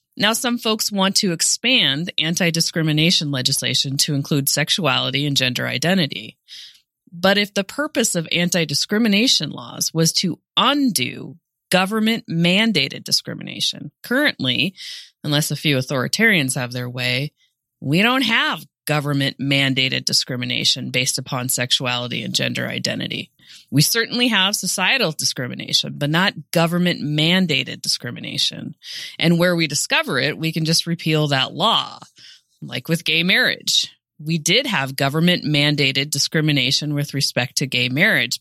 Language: English